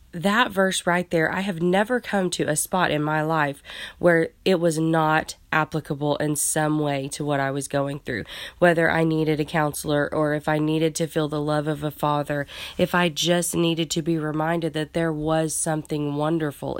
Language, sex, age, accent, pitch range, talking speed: English, female, 20-39, American, 150-175 Hz, 200 wpm